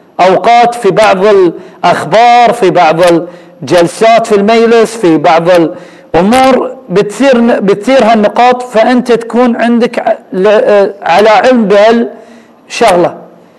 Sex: male